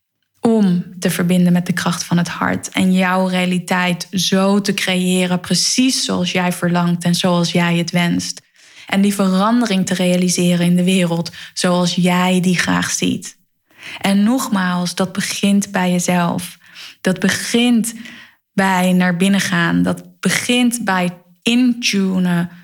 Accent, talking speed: Dutch, 140 wpm